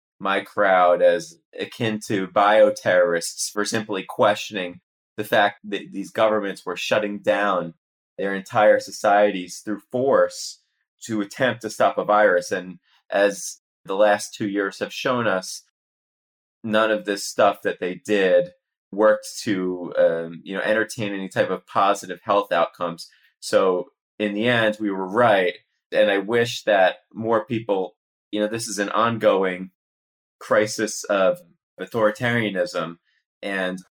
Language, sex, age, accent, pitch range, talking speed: English, male, 30-49, American, 95-110 Hz, 140 wpm